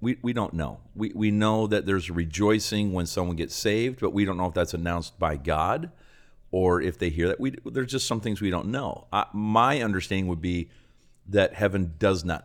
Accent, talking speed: American, 215 wpm